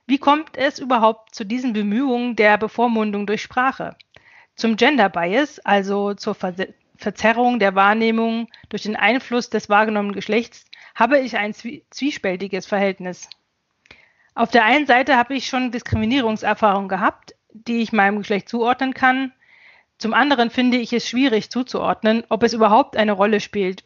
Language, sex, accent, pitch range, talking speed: German, female, German, 210-250 Hz, 145 wpm